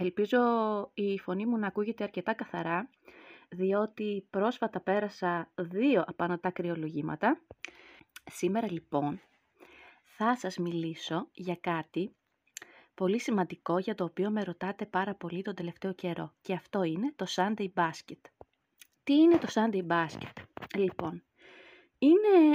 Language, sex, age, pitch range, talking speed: Greek, female, 20-39, 185-230 Hz, 125 wpm